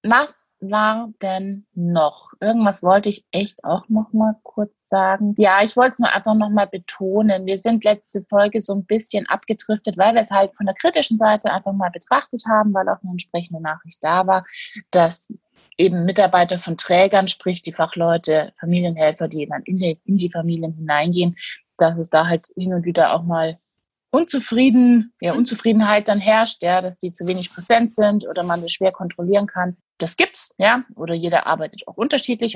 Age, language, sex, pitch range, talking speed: 30-49, German, female, 165-210 Hz, 175 wpm